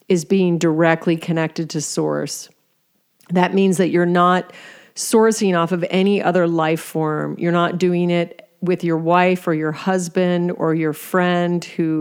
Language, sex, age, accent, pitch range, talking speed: English, female, 40-59, American, 160-180 Hz, 160 wpm